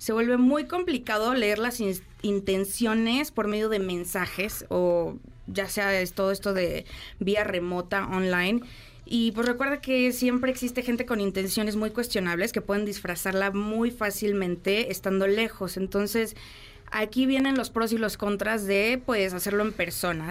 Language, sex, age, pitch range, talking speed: Spanish, female, 20-39, 190-230 Hz, 150 wpm